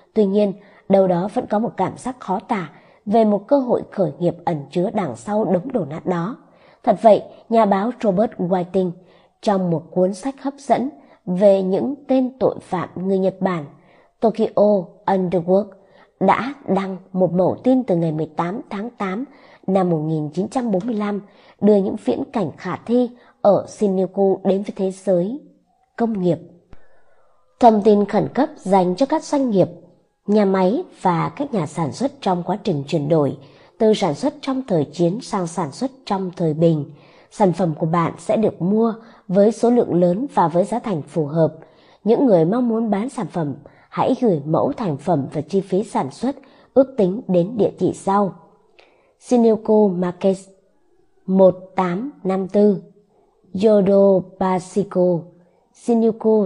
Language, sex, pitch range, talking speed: Vietnamese, male, 180-225 Hz, 160 wpm